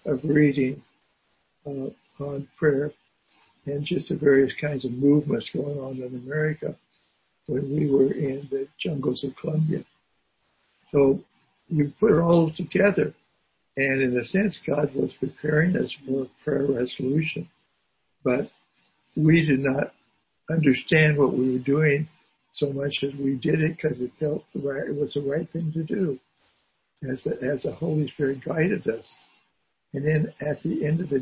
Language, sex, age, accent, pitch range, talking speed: English, male, 60-79, American, 135-155 Hz, 160 wpm